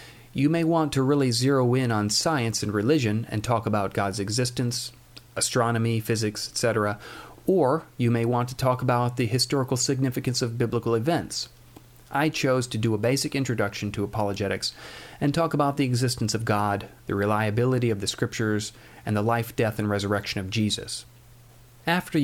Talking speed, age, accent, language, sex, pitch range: 165 wpm, 40-59, American, English, male, 105-130 Hz